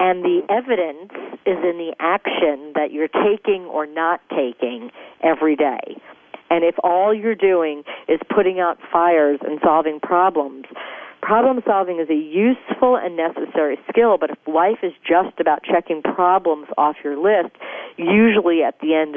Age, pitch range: 50-69, 150-185 Hz